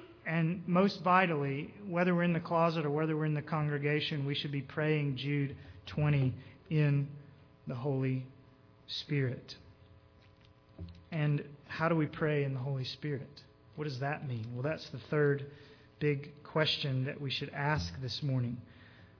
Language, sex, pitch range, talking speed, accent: English, male, 140-175 Hz, 155 wpm, American